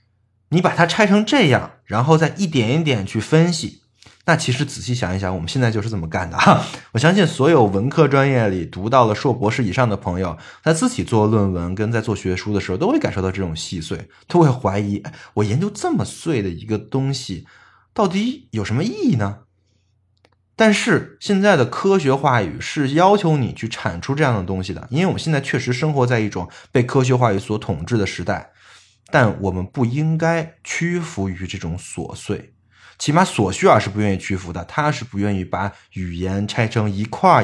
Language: Chinese